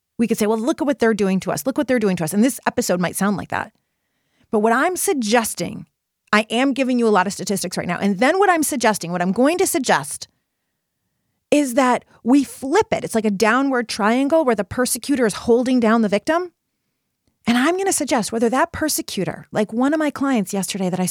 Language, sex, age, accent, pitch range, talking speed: English, female, 30-49, American, 195-260 Hz, 230 wpm